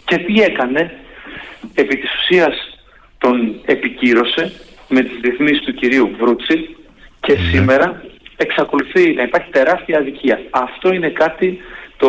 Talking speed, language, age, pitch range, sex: 125 wpm, Greek, 40-59, 140-185 Hz, male